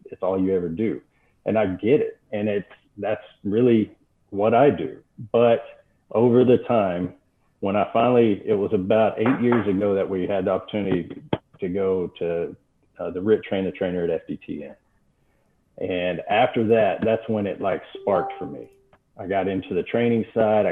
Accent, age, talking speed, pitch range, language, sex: American, 40-59, 175 wpm, 95-110 Hz, English, male